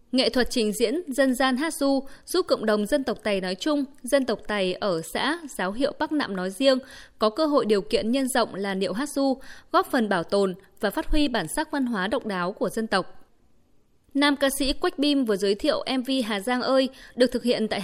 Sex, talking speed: female, 235 wpm